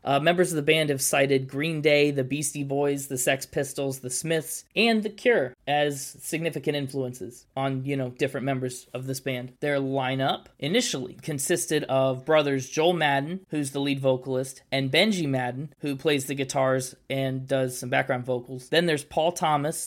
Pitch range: 135-165 Hz